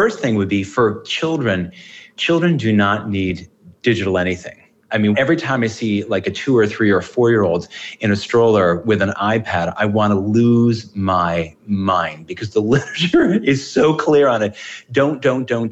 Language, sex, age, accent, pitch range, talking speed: English, male, 30-49, American, 95-125 Hz, 190 wpm